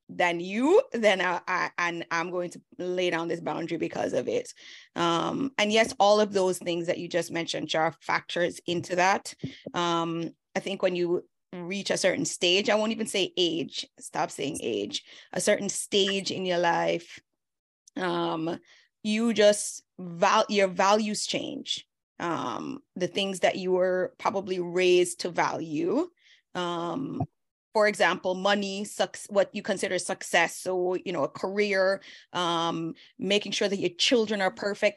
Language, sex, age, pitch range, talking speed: English, female, 20-39, 175-210 Hz, 160 wpm